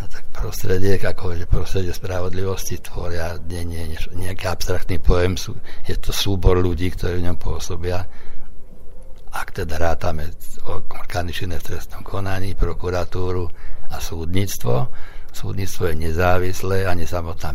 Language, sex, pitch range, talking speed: Slovak, male, 85-95 Hz, 125 wpm